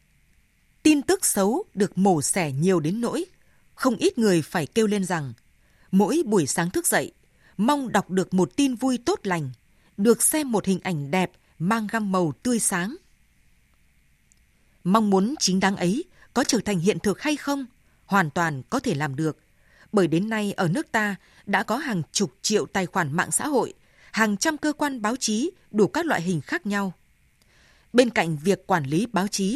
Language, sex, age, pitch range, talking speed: Vietnamese, female, 20-39, 180-235 Hz, 190 wpm